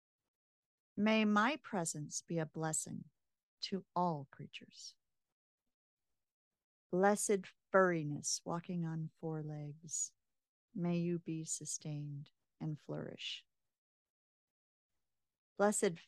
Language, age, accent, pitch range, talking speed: English, 50-69, American, 150-200 Hz, 80 wpm